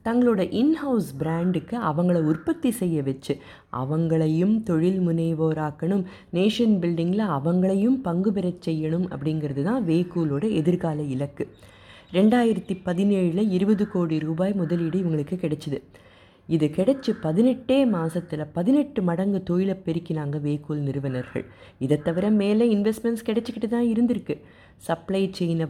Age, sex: 20-39, female